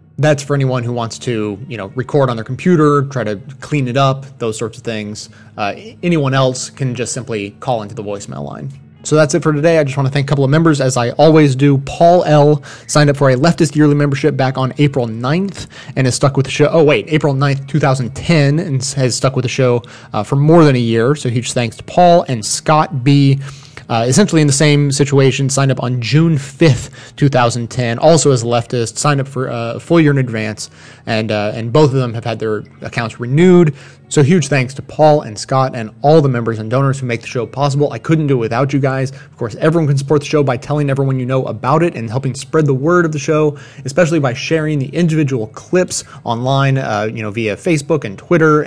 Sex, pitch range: male, 120-145 Hz